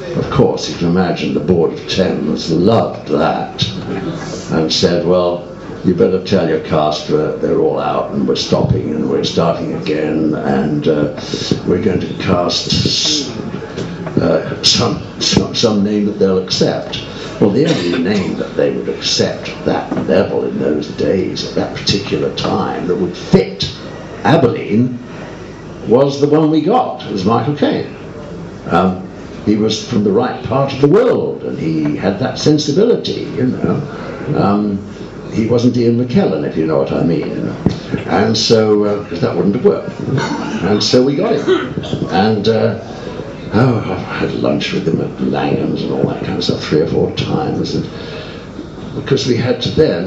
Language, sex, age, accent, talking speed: English, male, 60-79, British, 170 wpm